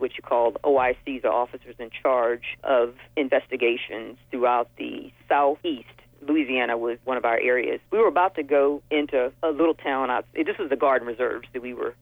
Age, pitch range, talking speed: 40-59, 130-210 Hz, 180 wpm